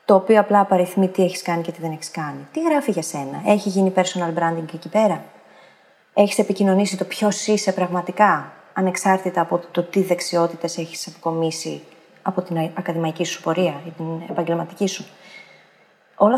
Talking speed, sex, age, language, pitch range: 170 wpm, female, 30-49, Greek, 170-230 Hz